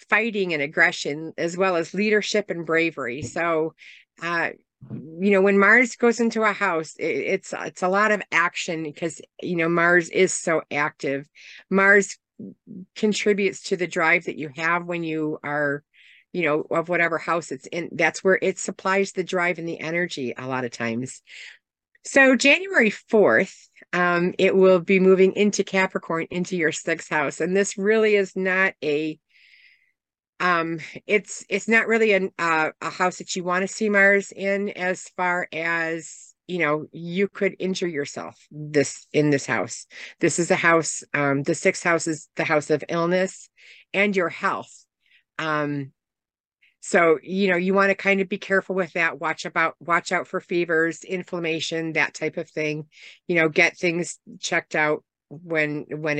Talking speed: 170 wpm